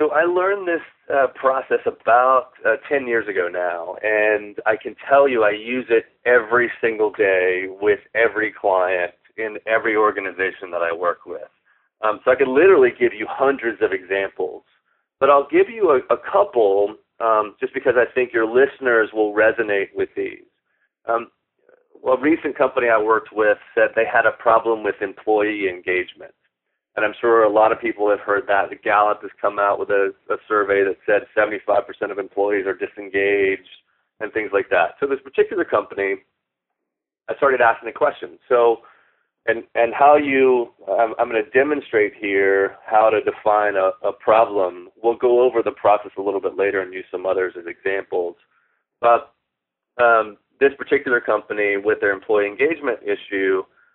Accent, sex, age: American, male, 40-59